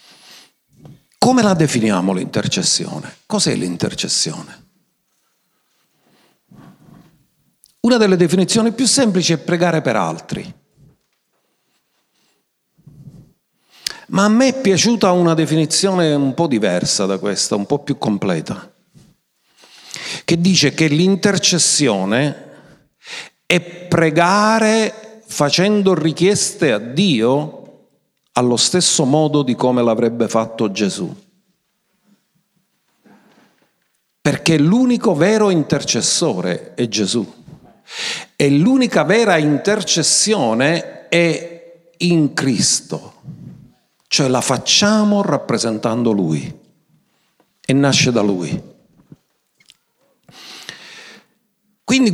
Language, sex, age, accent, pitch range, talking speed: Italian, male, 50-69, native, 145-205 Hz, 85 wpm